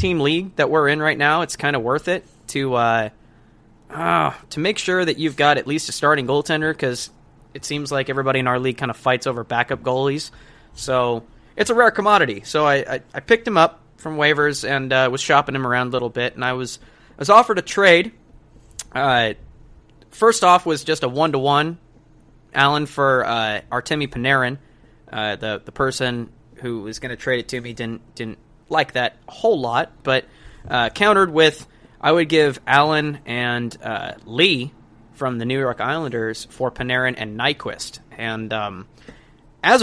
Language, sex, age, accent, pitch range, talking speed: English, male, 20-39, American, 120-150 Hz, 185 wpm